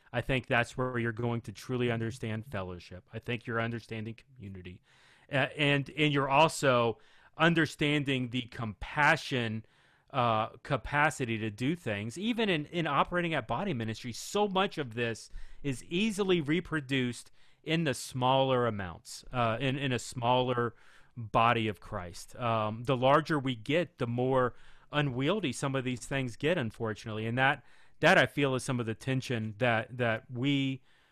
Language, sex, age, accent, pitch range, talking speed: English, male, 40-59, American, 115-145 Hz, 160 wpm